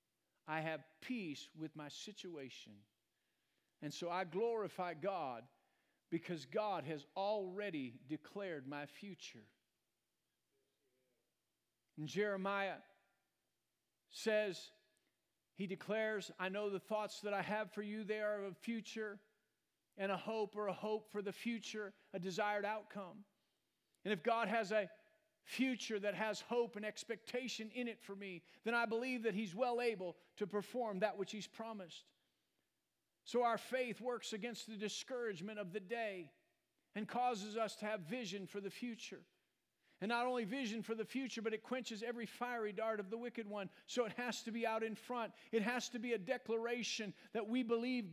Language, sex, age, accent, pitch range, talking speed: English, male, 50-69, American, 195-230 Hz, 160 wpm